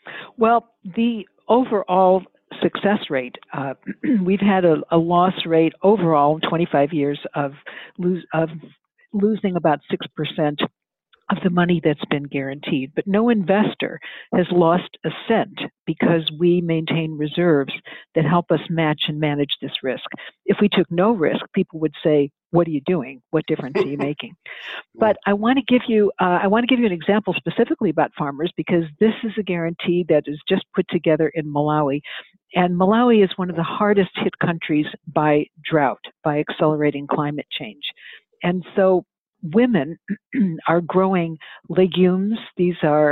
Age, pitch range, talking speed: 60-79, 155-200 Hz, 160 wpm